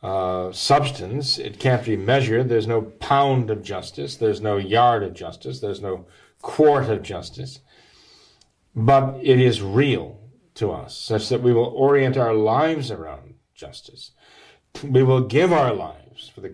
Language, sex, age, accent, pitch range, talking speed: English, male, 40-59, American, 110-140 Hz, 155 wpm